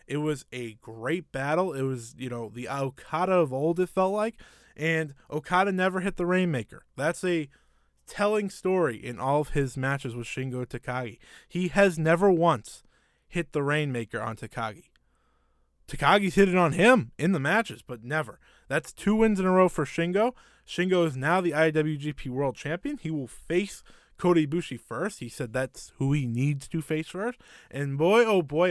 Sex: male